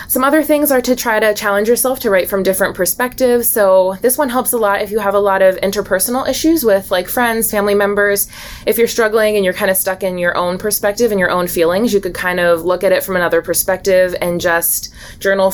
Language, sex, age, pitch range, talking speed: English, female, 20-39, 180-210 Hz, 240 wpm